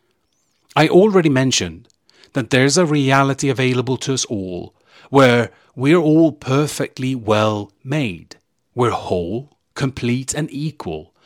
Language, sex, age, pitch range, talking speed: English, male, 40-59, 105-145 Hz, 115 wpm